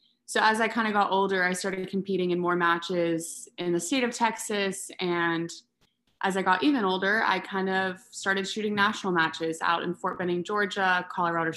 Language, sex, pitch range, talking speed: English, female, 175-200 Hz, 190 wpm